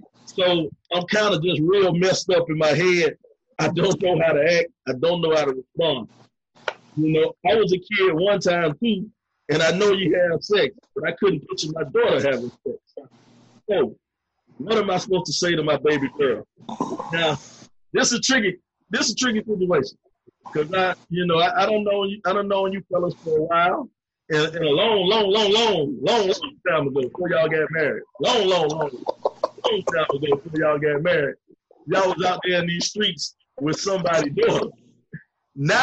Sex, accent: male, American